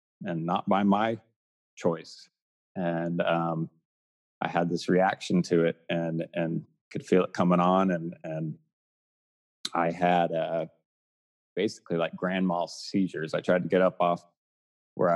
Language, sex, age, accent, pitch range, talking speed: English, male, 30-49, American, 85-100 Hz, 145 wpm